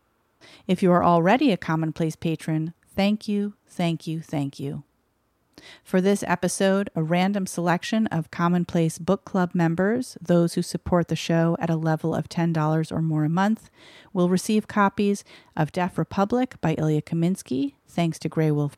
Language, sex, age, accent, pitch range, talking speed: English, female, 40-59, American, 160-190 Hz, 165 wpm